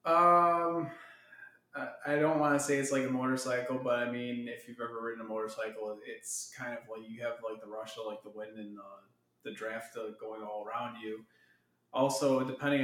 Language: English